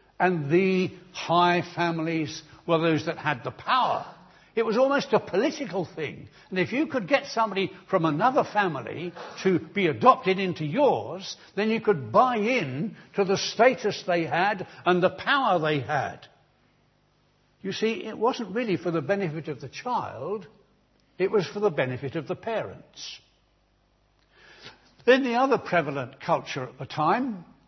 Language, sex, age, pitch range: English, male, 70-89, 150-205 Hz